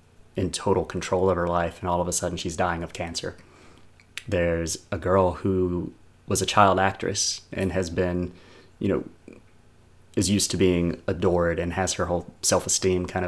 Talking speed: 175 wpm